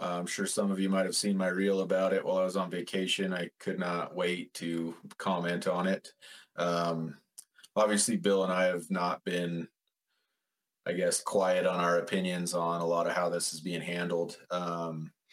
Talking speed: 190 wpm